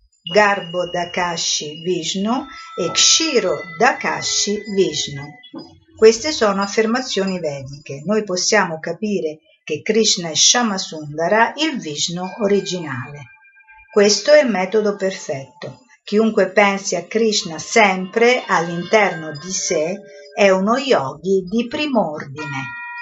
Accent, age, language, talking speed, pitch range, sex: native, 50-69, Italian, 100 wpm, 170-220 Hz, female